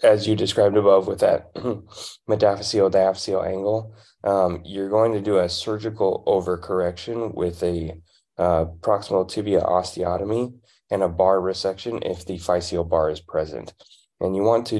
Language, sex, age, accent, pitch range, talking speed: English, male, 20-39, American, 85-105 Hz, 150 wpm